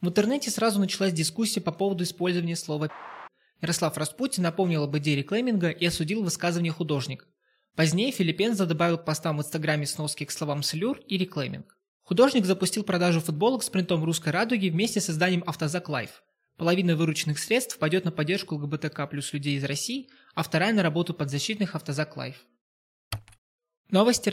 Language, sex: Russian, male